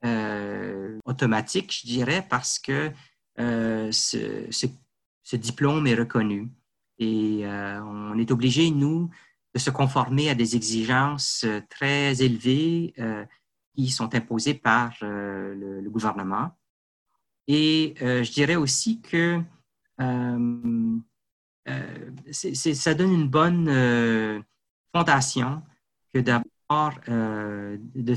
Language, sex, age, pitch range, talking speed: French, male, 40-59, 115-140 Hz, 120 wpm